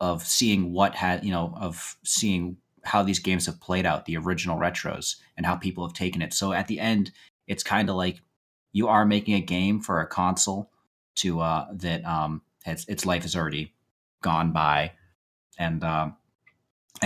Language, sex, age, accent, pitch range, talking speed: English, male, 30-49, American, 80-105 Hz, 185 wpm